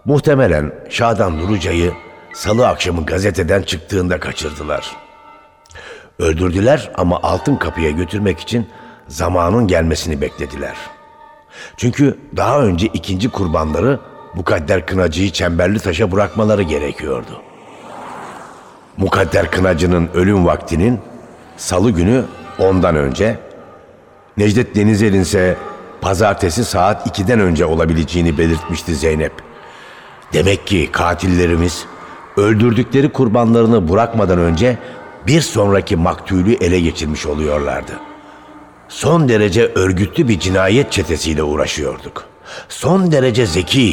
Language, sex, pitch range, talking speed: Turkish, male, 85-115 Hz, 95 wpm